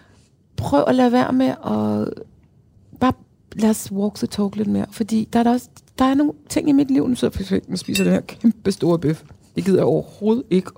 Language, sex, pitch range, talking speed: Danish, female, 150-225 Hz, 230 wpm